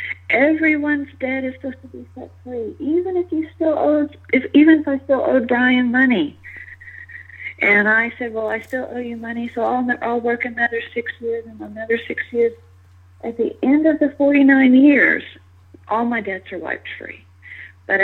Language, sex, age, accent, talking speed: English, female, 50-69, American, 185 wpm